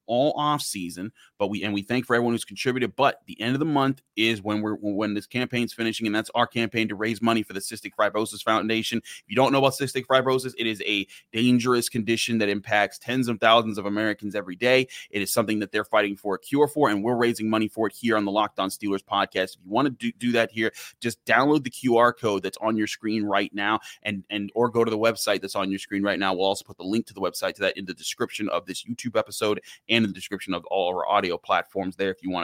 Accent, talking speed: American, 260 wpm